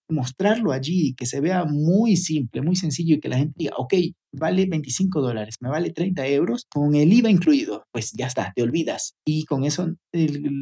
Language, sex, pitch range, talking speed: Spanish, male, 135-185 Hz, 200 wpm